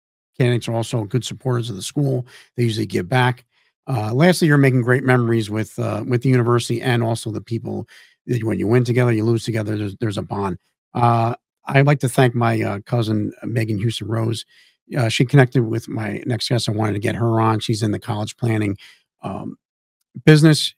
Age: 50-69